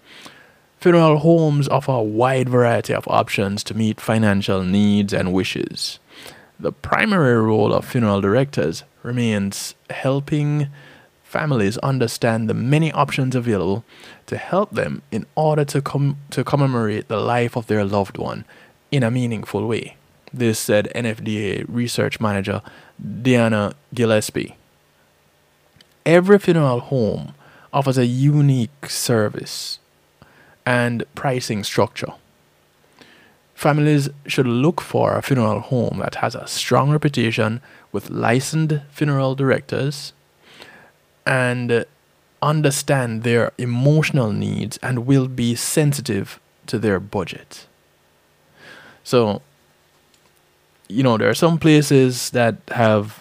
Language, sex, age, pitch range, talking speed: English, male, 20-39, 110-140 Hz, 115 wpm